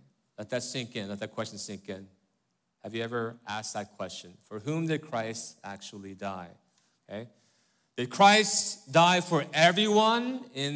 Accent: American